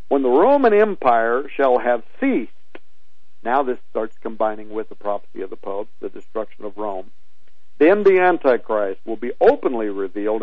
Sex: male